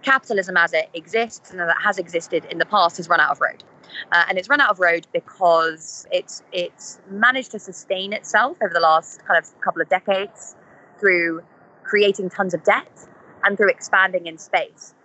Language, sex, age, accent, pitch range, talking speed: English, female, 20-39, British, 165-215 Hz, 190 wpm